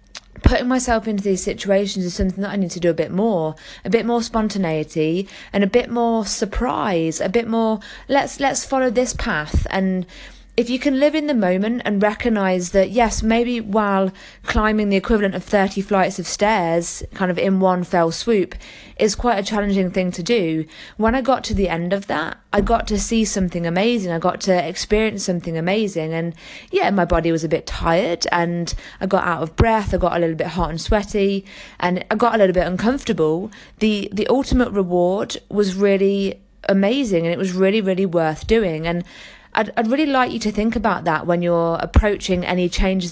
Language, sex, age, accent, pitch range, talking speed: English, female, 20-39, British, 175-220 Hz, 200 wpm